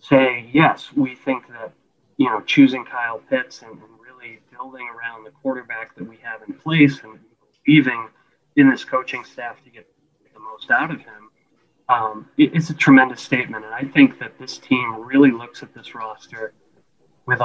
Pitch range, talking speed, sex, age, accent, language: 115-150 Hz, 180 wpm, male, 30-49, American, English